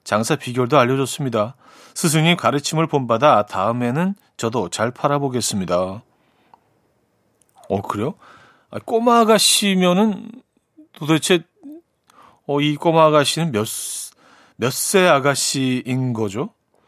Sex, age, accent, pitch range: male, 40-59, native, 110-165 Hz